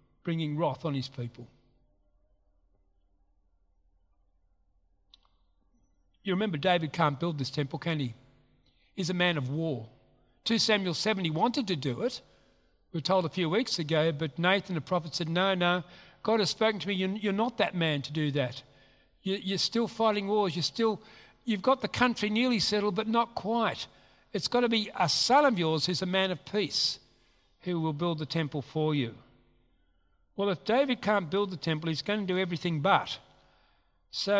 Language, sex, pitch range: English, male, 150-210 Hz